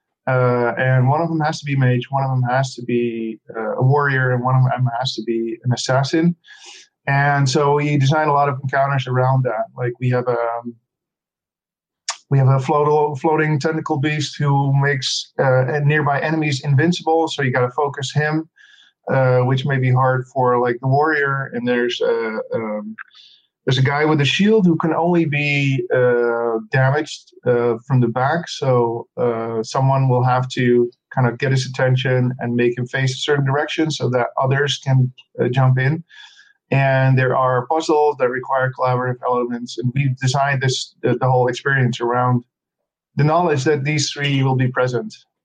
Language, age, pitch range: English, 50-69, 125-145 Hz